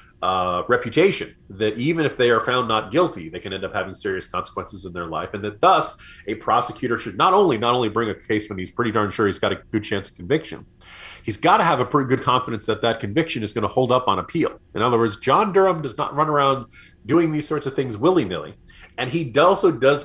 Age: 40-59